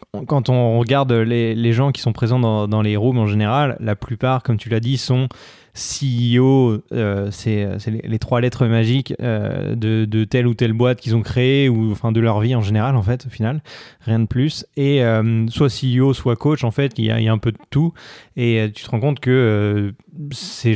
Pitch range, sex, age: 110-135 Hz, male, 20-39